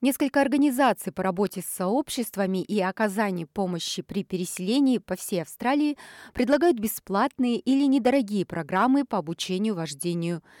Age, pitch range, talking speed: 30-49, 175-250 Hz, 125 wpm